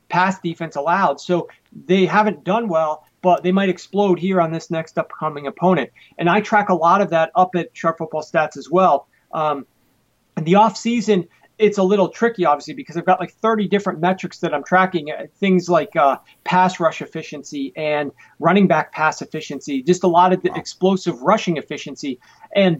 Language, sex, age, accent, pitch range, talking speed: English, male, 40-59, American, 155-185 Hz, 190 wpm